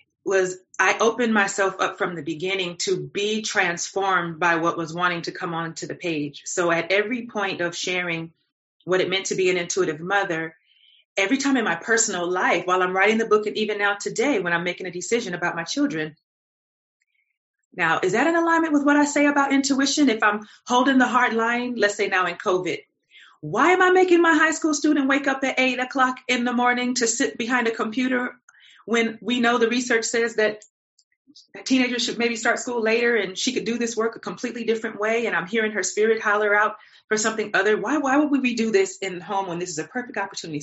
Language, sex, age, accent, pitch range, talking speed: English, female, 30-49, American, 180-245 Hz, 220 wpm